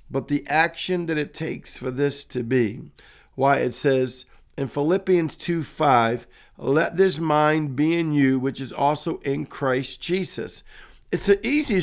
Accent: American